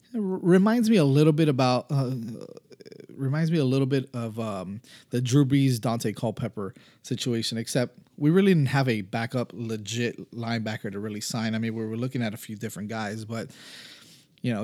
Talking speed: 190 wpm